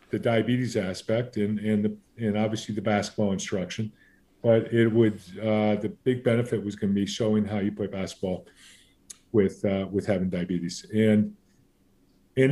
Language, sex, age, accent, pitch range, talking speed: English, male, 50-69, American, 100-120 Hz, 165 wpm